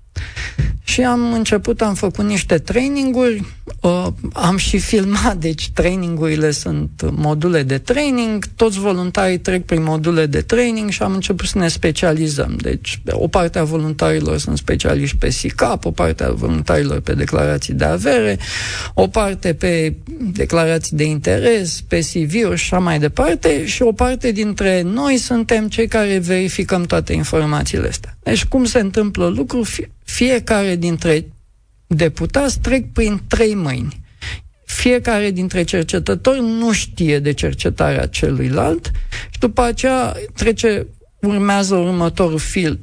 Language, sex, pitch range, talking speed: Romanian, male, 150-215 Hz, 135 wpm